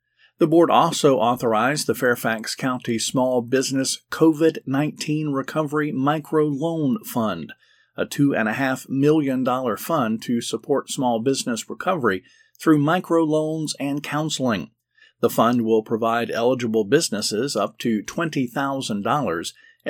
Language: English